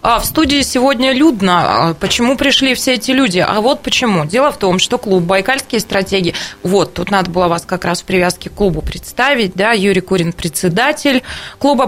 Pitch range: 195-270 Hz